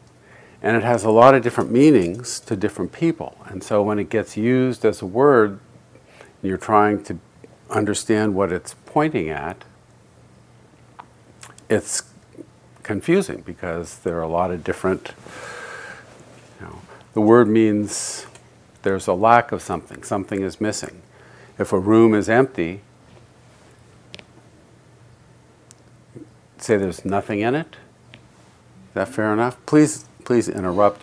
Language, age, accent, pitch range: English, 50-69, American, 95-120 Hz